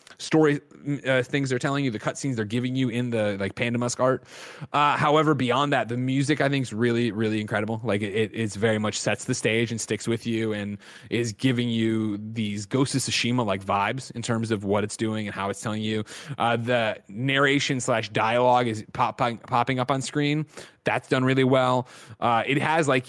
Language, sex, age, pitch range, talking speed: English, male, 20-39, 110-130 Hz, 210 wpm